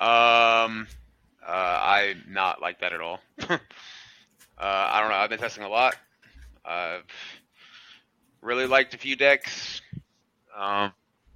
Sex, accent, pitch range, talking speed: male, American, 105-130 Hz, 125 wpm